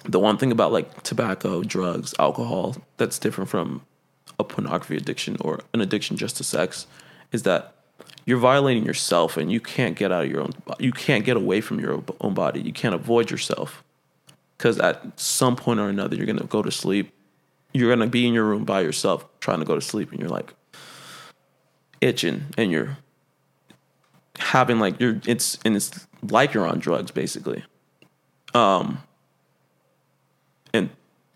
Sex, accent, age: male, American, 20-39